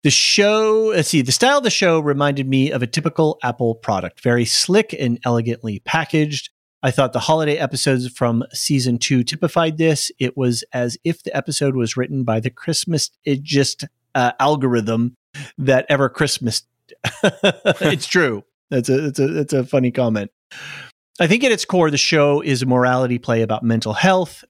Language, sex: English, male